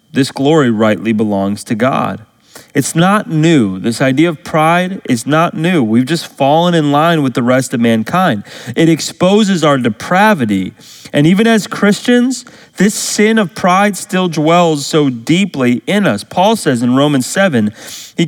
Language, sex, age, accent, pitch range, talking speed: English, male, 30-49, American, 150-210 Hz, 165 wpm